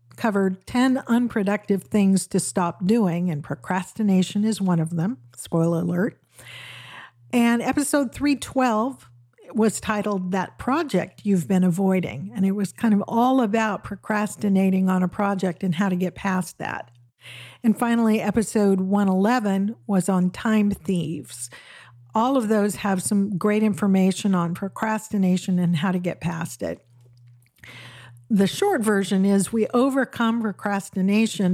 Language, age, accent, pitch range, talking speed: English, 50-69, American, 180-220 Hz, 135 wpm